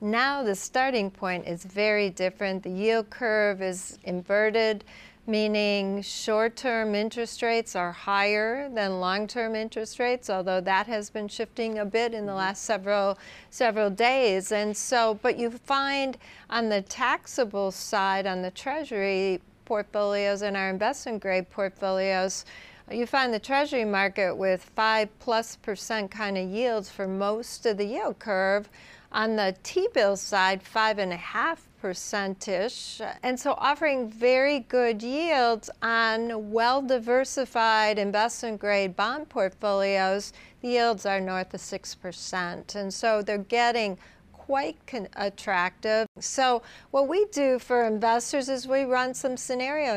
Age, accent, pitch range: 40-59, American, 195-245 Hz